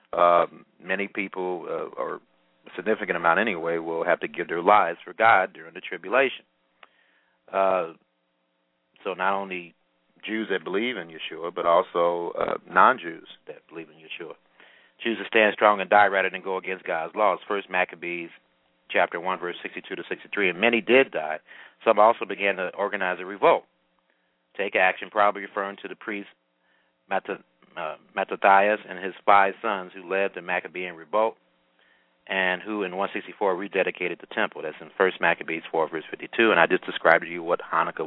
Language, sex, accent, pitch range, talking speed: English, male, American, 80-100 Hz, 170 wpm